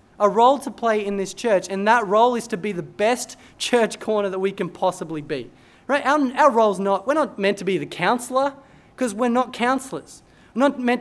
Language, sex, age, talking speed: English, male, 20-39, 230 wpm